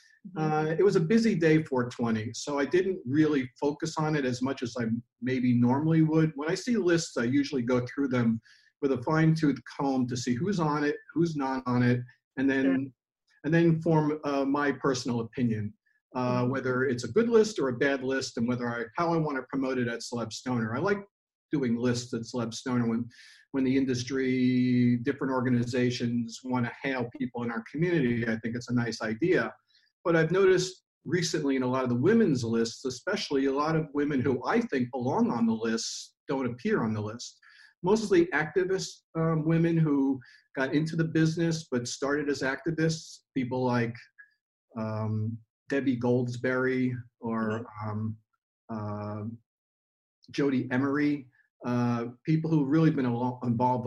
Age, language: 50-69, English